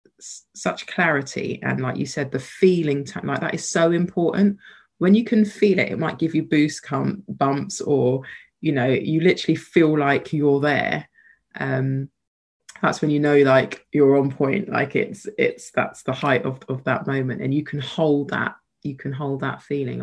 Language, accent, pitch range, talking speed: English, British, 135-155 Hz, 190 wpm